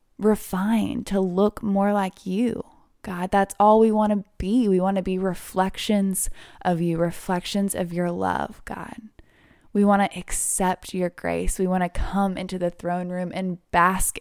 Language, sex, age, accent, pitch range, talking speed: English, female, 20-39, American, 180-205 Hz, 175 wpm